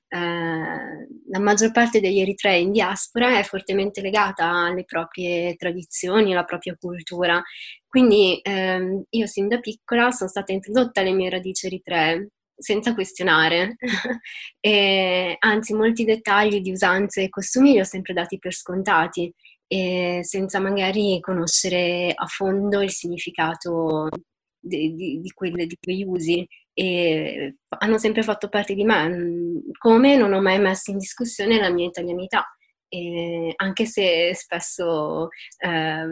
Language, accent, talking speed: Italian, native, 135 wpm